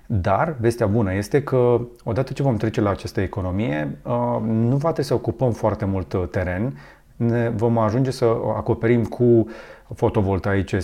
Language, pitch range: Romanian, 100-125 Hz